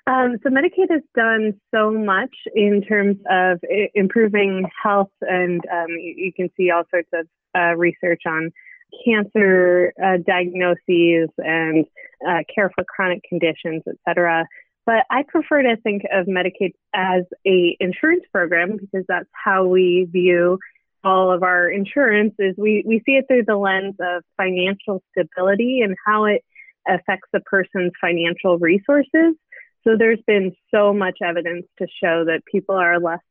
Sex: female